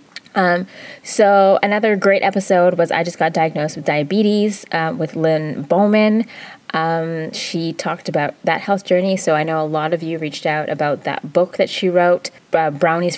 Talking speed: 185 wpm